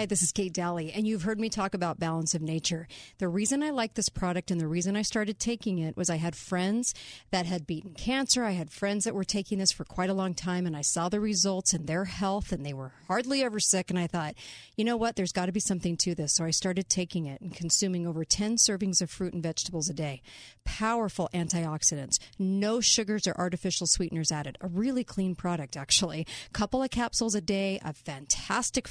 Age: 40-59